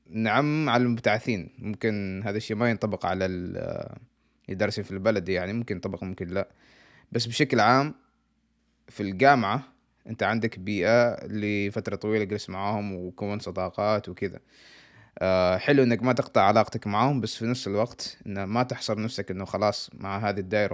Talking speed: 150 wpm